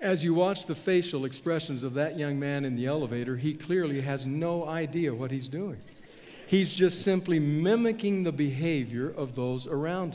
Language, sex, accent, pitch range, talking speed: English, male, American, 140-195 Hz, 175 wpm